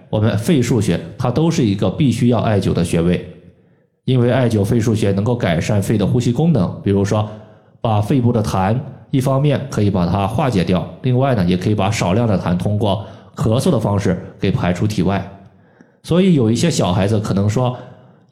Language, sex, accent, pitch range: Chinese, male, native, 100-135 Hz